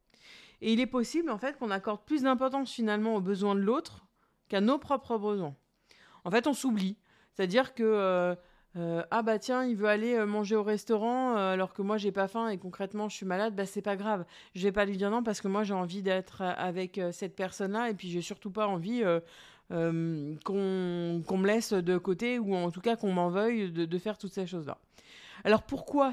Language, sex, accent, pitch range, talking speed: French, female, French, 180-225 Hz, 225 wpm